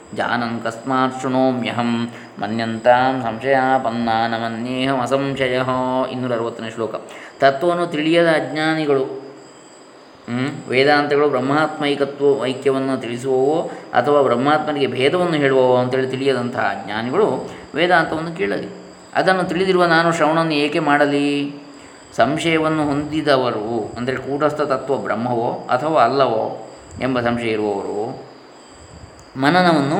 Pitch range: 125-150 Hz